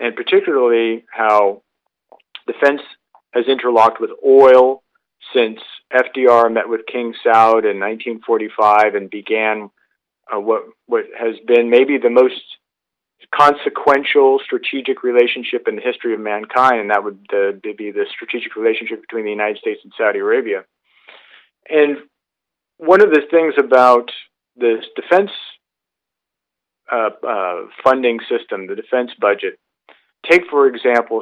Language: English